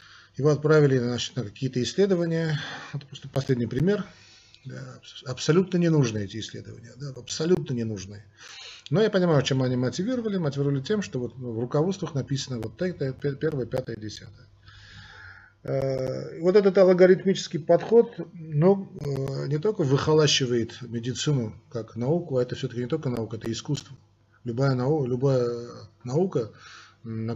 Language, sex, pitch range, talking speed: Russian, male, 115-150 Hz, 125 wpm